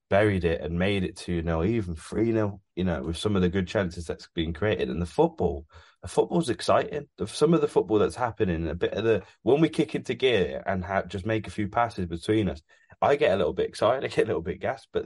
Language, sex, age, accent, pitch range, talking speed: English, male, 20-39, British, 85-110 Hz, 265 wpm